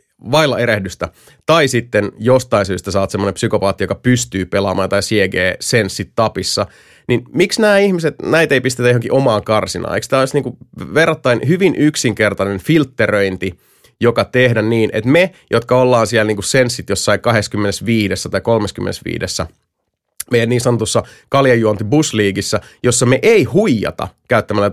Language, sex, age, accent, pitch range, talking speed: Finnish, male, 30-49, native, 105-135 Hz, 135 wpm